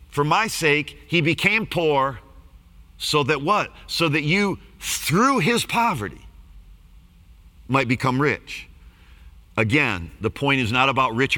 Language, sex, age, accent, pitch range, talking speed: English, male, 50-69, American, 85-140 Hz, 130 wpm